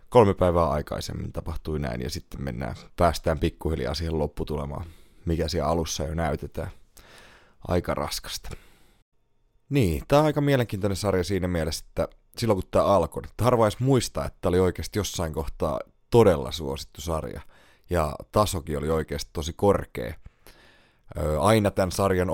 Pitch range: 75-95 Hz